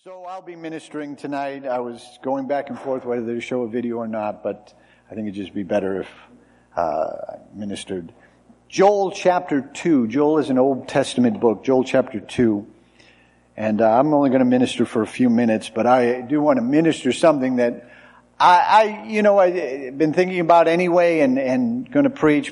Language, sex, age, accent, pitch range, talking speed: English, male, 50-69, American, 120-195 Hz, 190 wpm